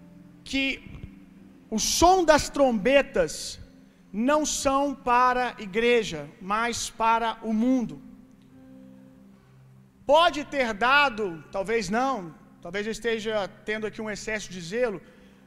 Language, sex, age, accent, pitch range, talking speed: Gujarati, male, 40-59, Brazilian, 195-260 Hz, 110 wpm